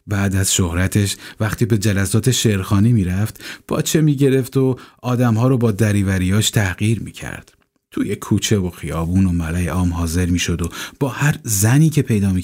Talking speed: 180 wpm